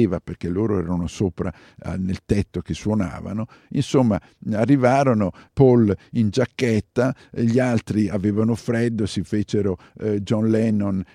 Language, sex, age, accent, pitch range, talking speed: Italian, male, 50-69, native, 100-125 Hz, 115 wpm